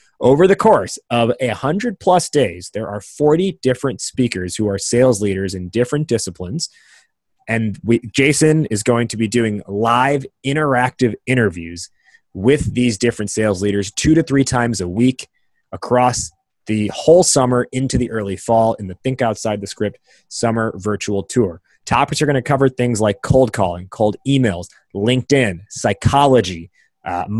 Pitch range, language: 105-140 Hz, English